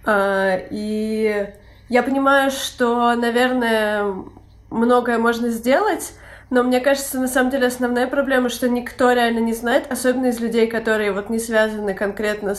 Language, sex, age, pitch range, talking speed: Russian, female, 20-39, 215-260 Hz, 135 wpm